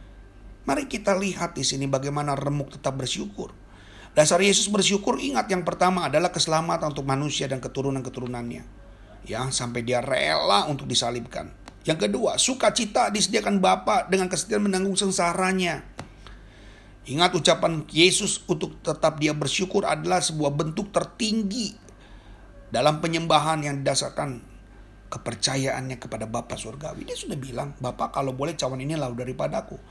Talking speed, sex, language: 130 wpm, male, Indonesian